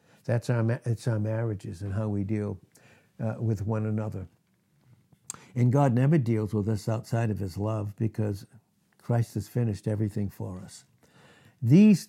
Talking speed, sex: 155 wpm, male